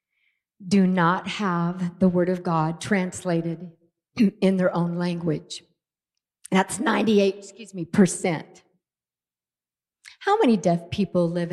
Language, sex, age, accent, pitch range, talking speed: English, female, 50-69, American, 160-200 Hz, 115 wpm